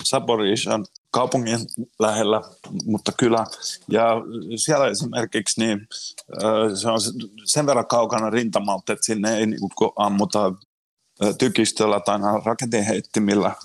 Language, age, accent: Finnish, 30-49, native